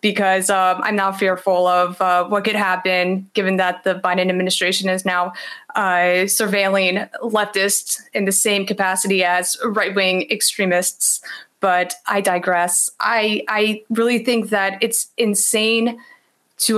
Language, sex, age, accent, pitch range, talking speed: English, female, 20-39, American, 195-220 Hz, 135 wpm